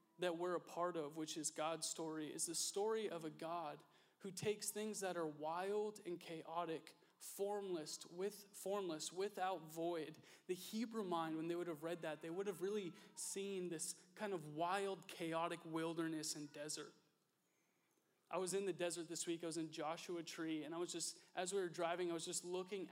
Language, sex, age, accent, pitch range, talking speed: English, male, 20-39, American, 160-190 Hz, 195 wpm